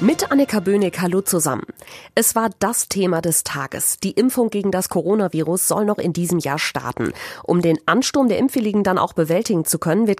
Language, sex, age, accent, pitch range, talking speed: German, female, 30-49, German, 160-215 Hz, 195 wpm